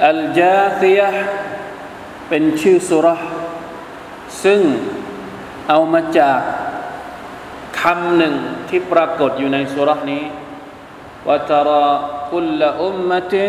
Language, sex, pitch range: Thai, male, 145-180 Hz